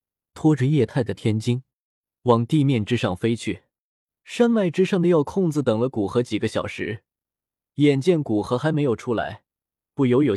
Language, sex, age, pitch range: Chinese, male, 20-39, 115-165 Hz